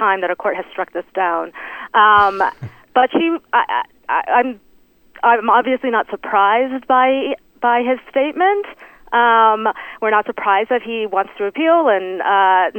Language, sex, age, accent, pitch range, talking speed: English, female, 30-49, American, 185-240 Hz, 155 wpm